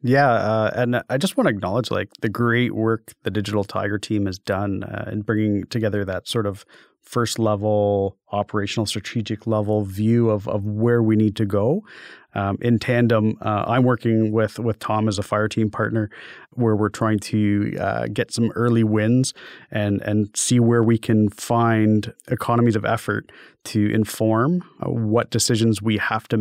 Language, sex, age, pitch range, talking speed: English, male, 30-49, 105-115 Hz, 175 wpm